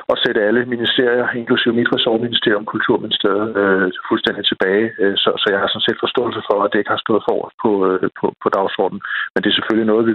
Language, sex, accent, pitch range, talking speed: Danish, male, native, 105-125 Hz, 215 wpm